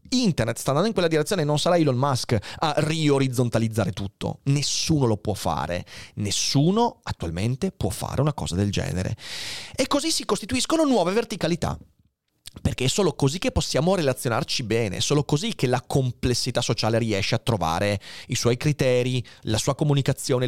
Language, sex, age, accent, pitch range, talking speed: Italian, male, 30-49, native, 110-155 Hz, 160 wpm